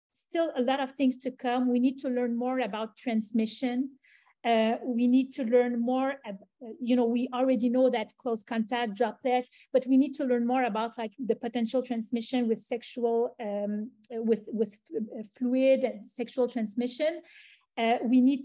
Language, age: English, 40-59